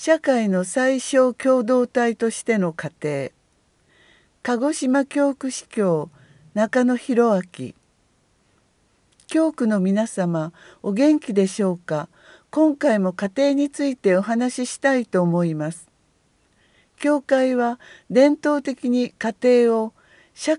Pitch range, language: 190-265 Hz, Japanese